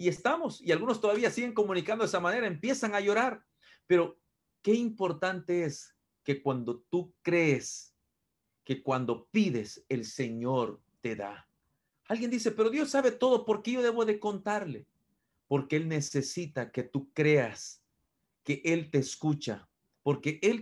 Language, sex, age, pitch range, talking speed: Spanish, male, 40-59, 135-200 Hz, 150 wpm